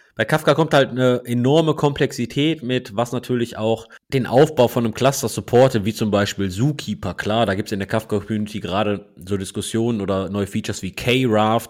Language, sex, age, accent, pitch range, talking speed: German, male, 30-49, German, 105-130 Hz, 190 wpm